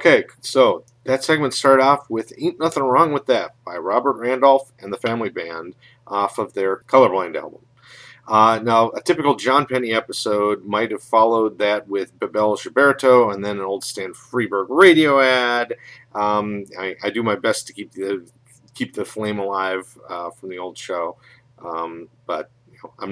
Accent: American